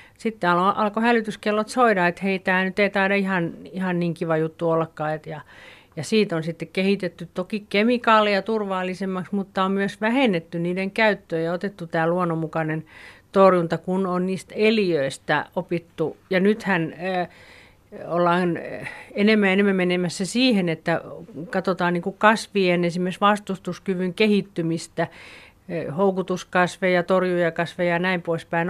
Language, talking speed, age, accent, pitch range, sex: Finnish, 130 wpm, 50-69, native, 165-195 Hz, female